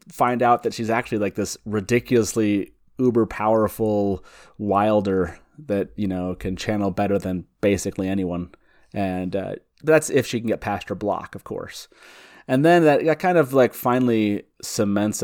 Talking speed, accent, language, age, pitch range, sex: 160 wpm, American, English, 30-49, 95-115 Hz, male